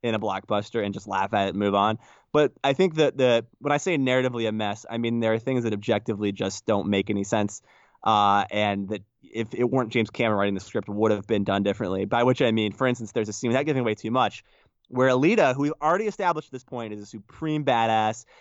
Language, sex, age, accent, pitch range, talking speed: English, male, 20-39, American, 110-150 Hz, 255 wpm